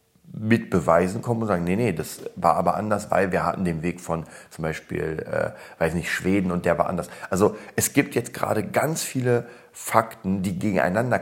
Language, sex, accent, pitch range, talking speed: German, male, German, 85-105 Hz, 200 wpm